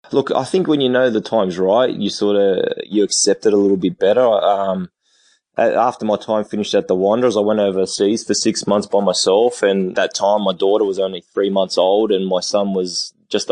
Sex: male